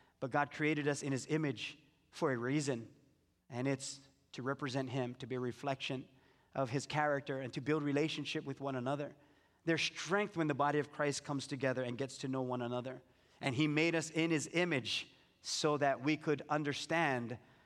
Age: 30-49